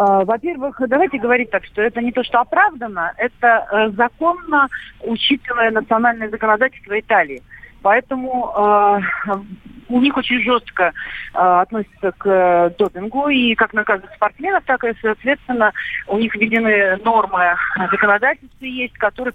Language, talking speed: Russian, 130 wpm